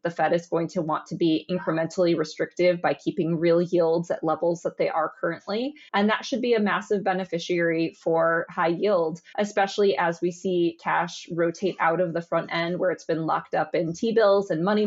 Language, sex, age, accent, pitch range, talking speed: English, female, 20-39, American, 165-200 Hz, 200 wpm